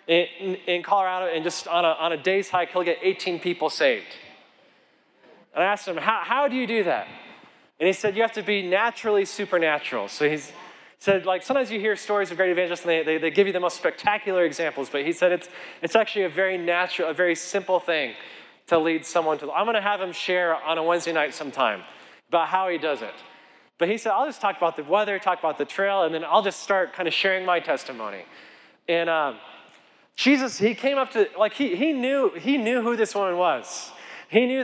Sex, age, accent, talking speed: male, 20-39, American, 225 wpm